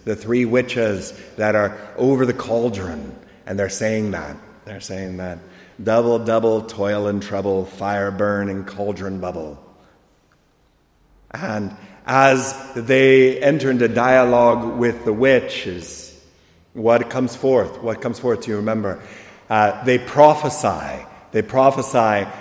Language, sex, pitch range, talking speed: English, male, 105-135 Hz, 125 wpm